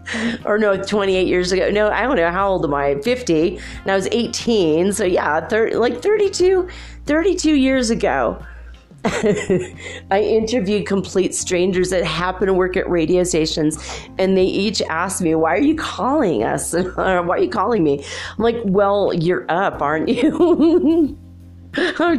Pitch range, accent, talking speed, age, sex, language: 155-210 Hz, American, 165 wpm, 30-49, female, English